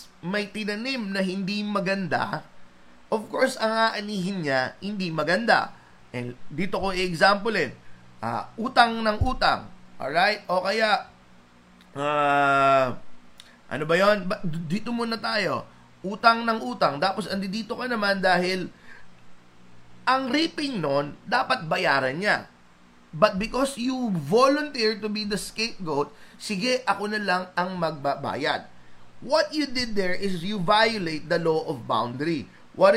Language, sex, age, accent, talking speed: Filipino, male, 30-49, native, 130 wpm